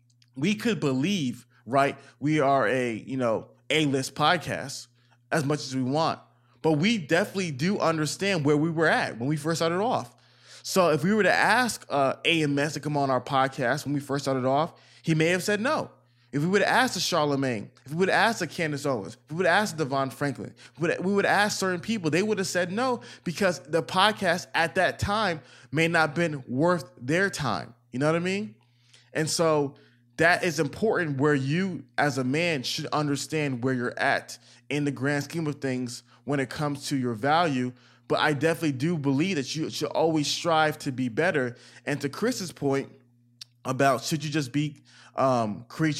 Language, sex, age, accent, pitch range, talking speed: English, male, 20-39, American, 130-170 Hz, 205 wpm